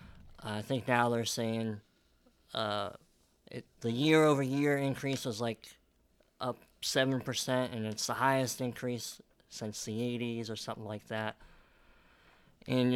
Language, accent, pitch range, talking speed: English, American, 110-135 Hz, 130 wpm